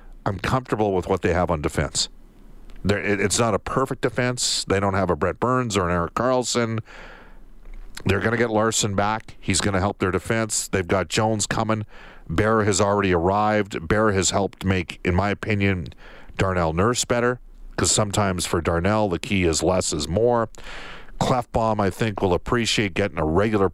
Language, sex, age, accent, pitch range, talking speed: English, male, 50-69, American, 90-115 Hz, 180 wpm